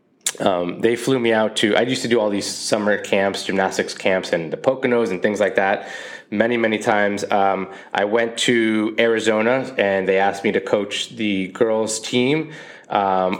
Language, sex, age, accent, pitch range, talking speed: English, male, 20-39, American, 95-120 Hz, 185 wpm